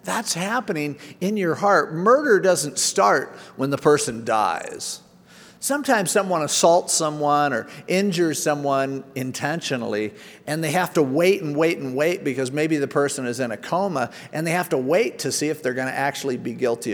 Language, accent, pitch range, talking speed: English, American, 135-185 Hz, 180 wpm